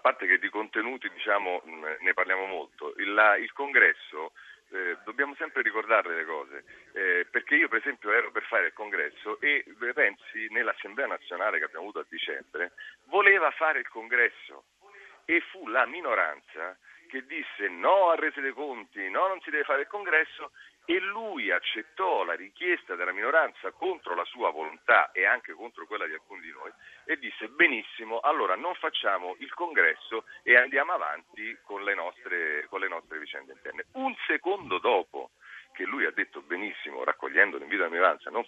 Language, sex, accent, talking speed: Italian, male, native, 175 wpm